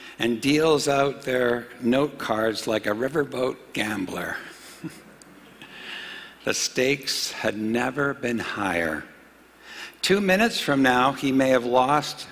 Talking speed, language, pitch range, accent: 115 wpm, English, 115-145 Hz, American